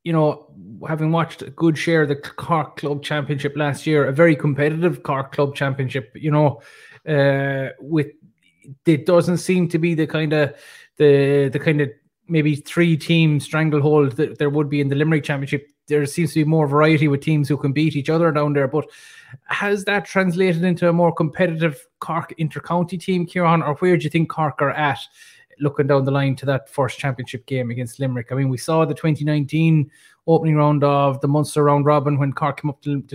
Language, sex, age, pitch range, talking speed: English, male, 20-39, 140-165 Hz, 205 wpm